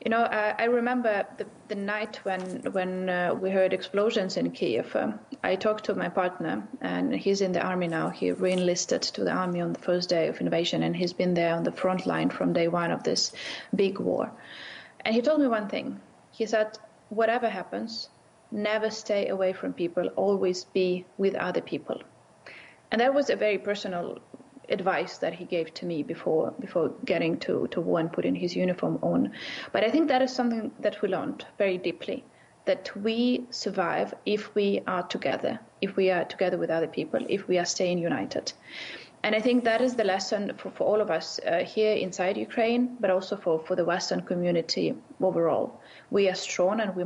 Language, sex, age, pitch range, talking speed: English, female, 30-49, 180-215 Hz, 200 wpm